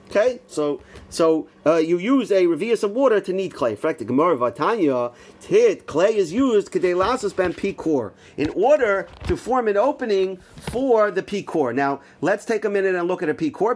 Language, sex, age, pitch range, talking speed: English, male, 40-59, 165-225 Hz, 175 wpm